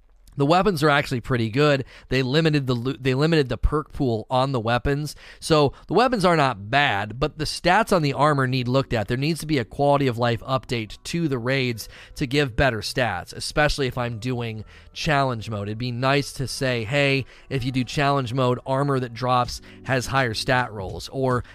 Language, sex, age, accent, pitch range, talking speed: English, male, 30-49, American, 120-145 Hz, 205 wpm